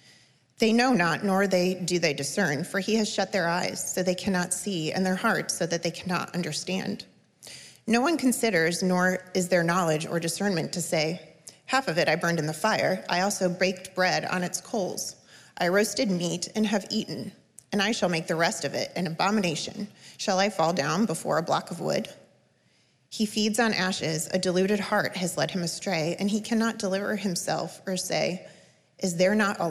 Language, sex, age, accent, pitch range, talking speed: English, female, 30-49, American, 170-205 Hz, 200 wpm